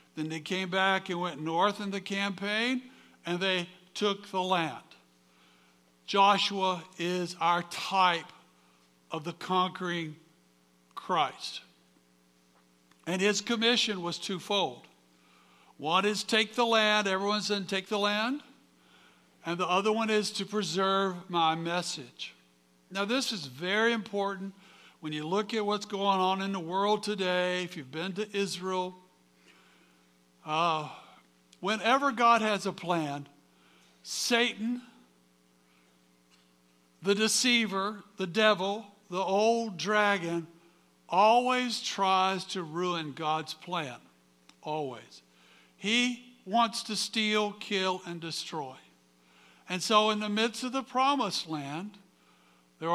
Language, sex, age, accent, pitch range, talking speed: English, male, 60-79, American, 140-210 Hz, 120 wpm